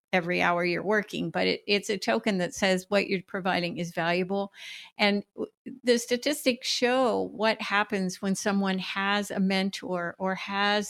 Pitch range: 185-210 Hz